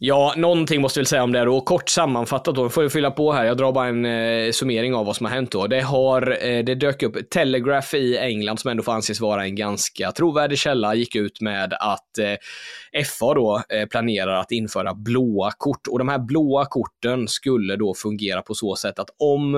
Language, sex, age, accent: Swedish, male, 20-39, native